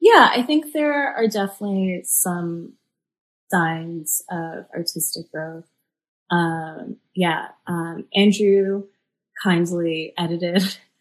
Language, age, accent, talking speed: English, 20-39, American, 95 wpm